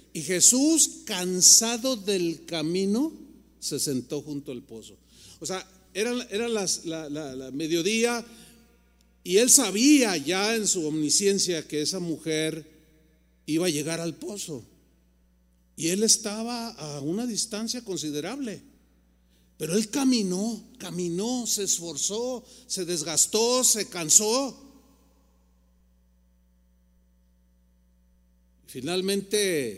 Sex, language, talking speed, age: male, Spanish, 105 wpm, 40-59